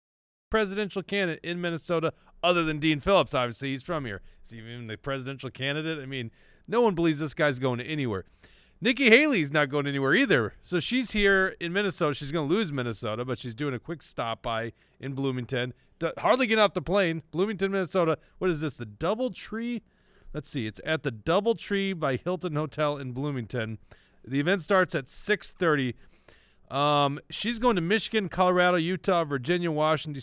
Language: English